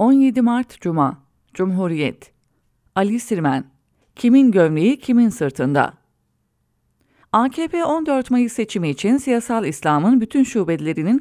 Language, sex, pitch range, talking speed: English, female, 180-260 Hz, 100 wpm